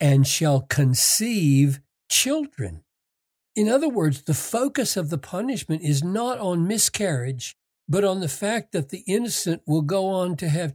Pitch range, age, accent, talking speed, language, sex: 125-170 Hz, 60-79, American, 155 wpm, English, male